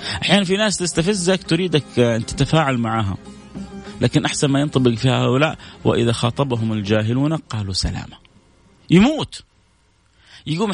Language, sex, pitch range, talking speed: Arabic, male, 115-165 Hz, 115 wpm